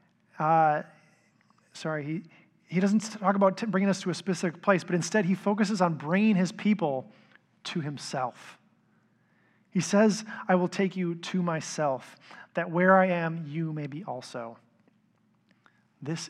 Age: 30-49